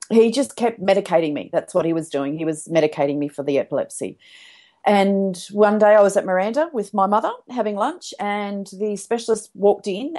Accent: Australian